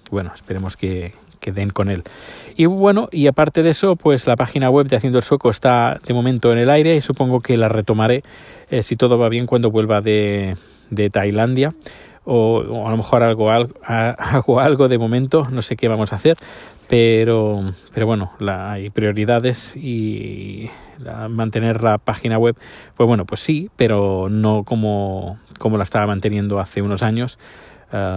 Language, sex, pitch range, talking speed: Spanish, male, 105-125 Hz, 180 wpm